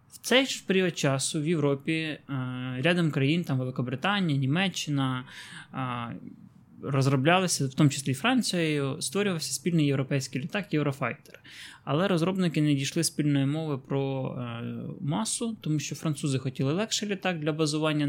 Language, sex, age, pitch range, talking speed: Ukrainian, male, 20-39, 135-165 Hz, 125 wpm